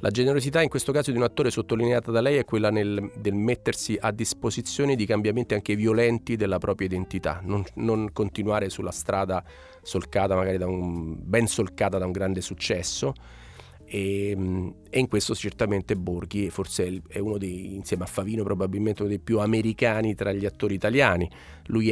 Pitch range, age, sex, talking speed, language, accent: 90-110 Hz, 30-49, male, 170 wpm, Italian, native